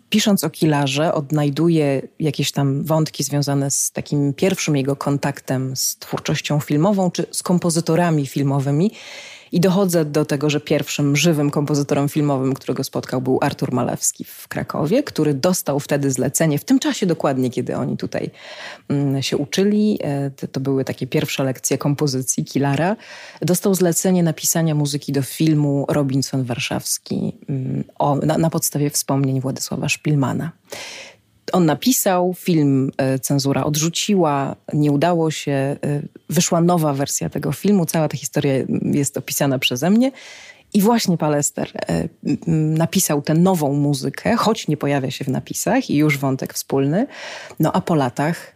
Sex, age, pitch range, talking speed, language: female, 30-49, 140-185 Hz, 135 wpm, Polish